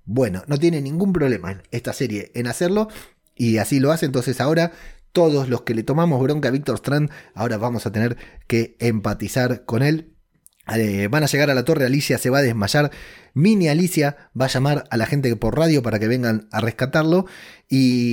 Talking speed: 200 wpm